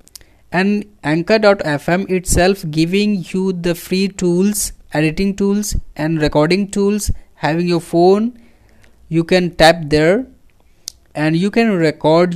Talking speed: 115 wpm